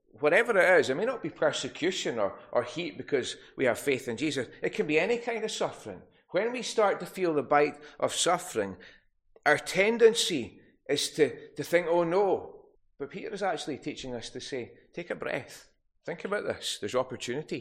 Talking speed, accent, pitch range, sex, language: 195 wpm, British, 125-165 Hz, male, English